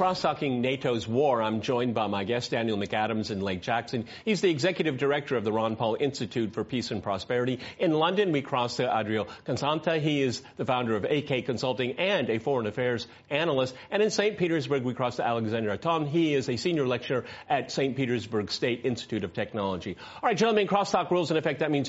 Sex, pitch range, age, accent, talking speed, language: male, 125-200 Hz, 40-59, American, 205 wpm, English